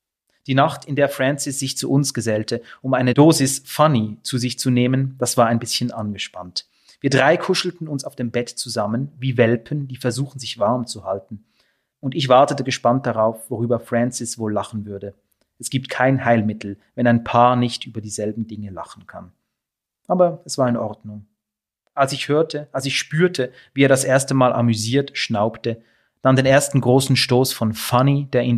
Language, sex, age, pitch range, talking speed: German, male, 30-49, 115-135 Hz, 185 wpm